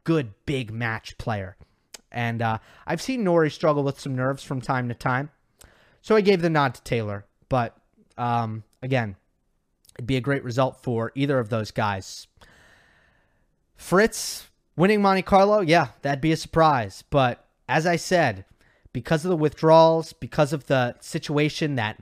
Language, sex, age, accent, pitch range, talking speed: English, male, 30-49, American, 120-160 Hz, 160 wpm